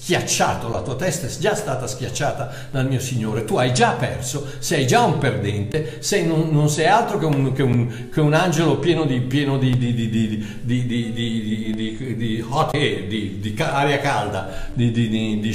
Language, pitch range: Italian, 120-185 Hz